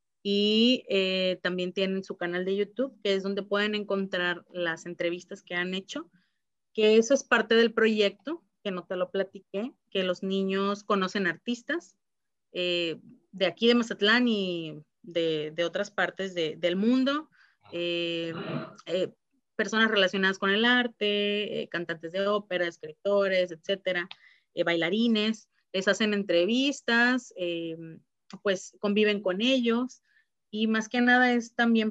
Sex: female